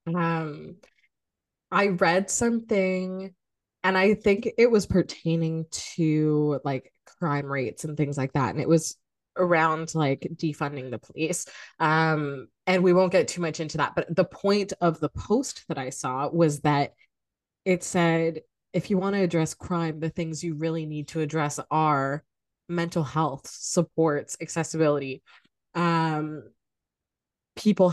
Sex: female